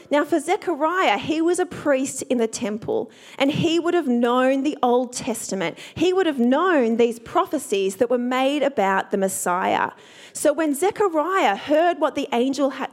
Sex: female